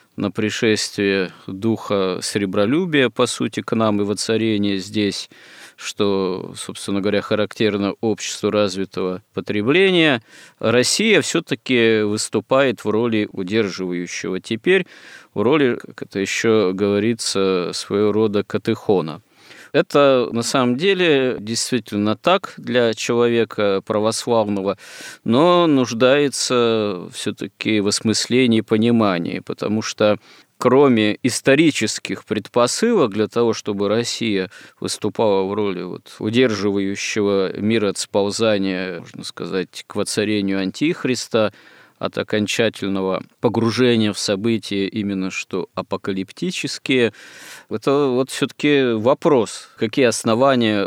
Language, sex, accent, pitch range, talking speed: Russian, male, native, 100-115 Hz, 100 wpm